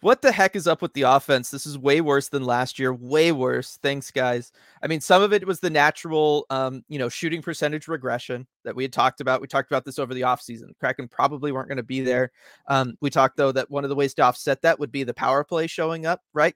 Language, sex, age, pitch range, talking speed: English, male, 30-49, 135-170 Hz, 260 wpm